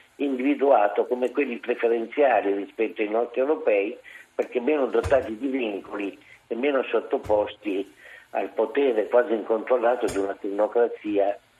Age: 50-69